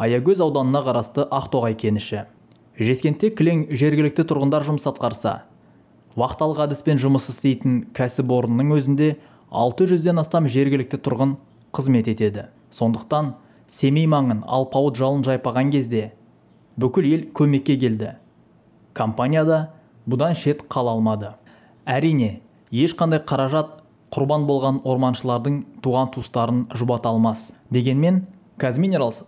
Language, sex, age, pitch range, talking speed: Russian, male, 20-39, 120-145 Hz, 100 wpm